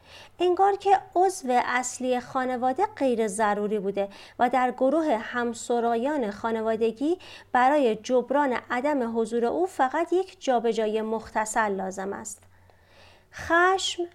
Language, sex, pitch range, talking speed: Persian, female, 215-290 Hz, 115 wpm